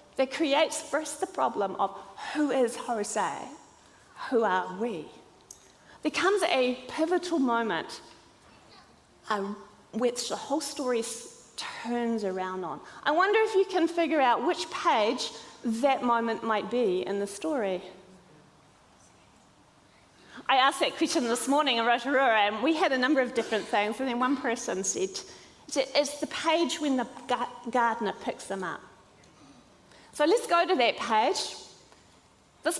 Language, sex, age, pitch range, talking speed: English, female, 30-49, 225-325 Hz, 145 wpm